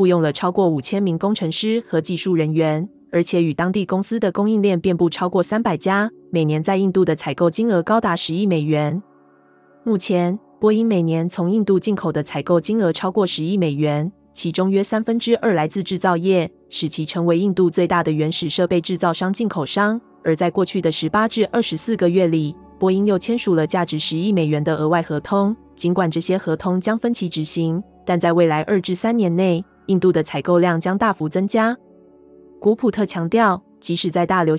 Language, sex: Chinese, female